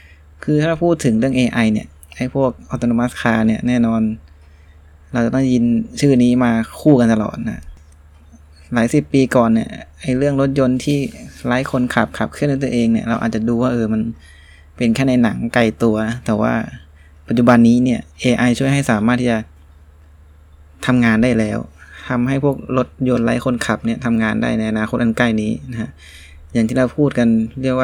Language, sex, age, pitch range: Thai, male, 20-39, 75-125 Hz